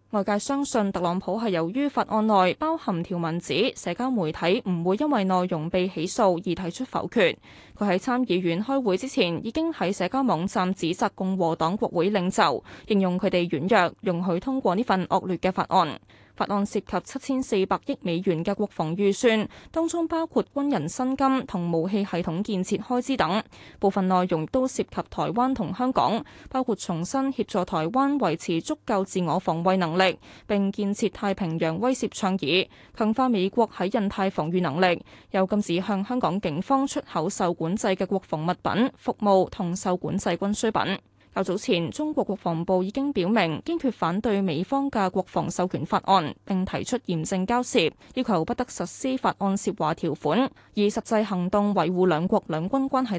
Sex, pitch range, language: female, 180-230 Hz, Chinese